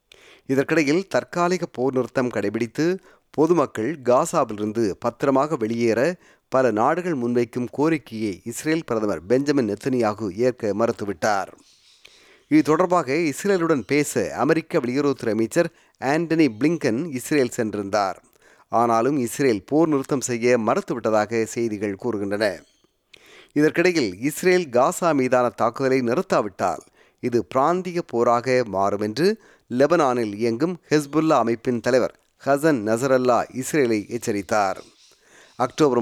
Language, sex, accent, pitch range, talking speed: Tamil, male, native, 115-155 Hz, 95 wpm